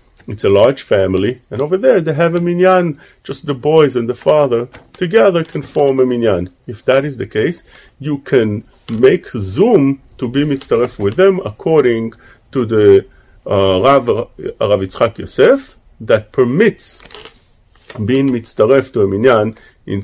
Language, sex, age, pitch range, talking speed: English, male, 40-59, 115-140 Hz, 155 wpm